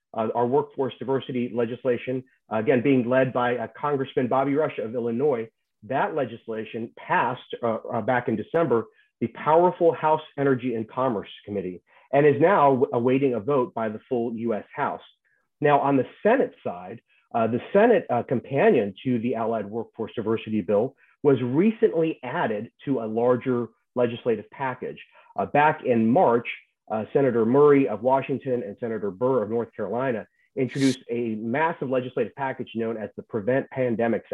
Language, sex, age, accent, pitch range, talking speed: English, male, 40-59, American, 115-145 Hz, 160 wpm